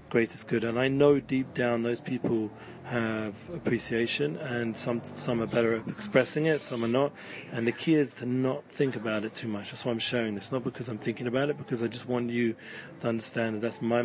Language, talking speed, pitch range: English, 230 wpm, 115-130 Hz